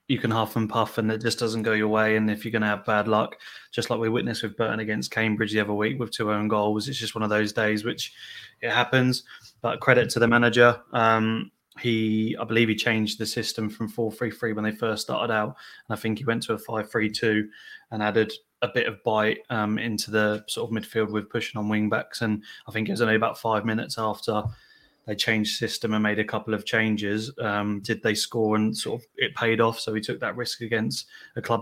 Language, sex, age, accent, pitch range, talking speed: English, male, 20-39, British, 110-115 Hz, 240 wpm